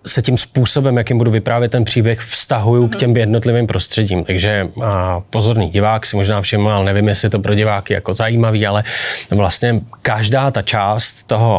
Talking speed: 175 wpm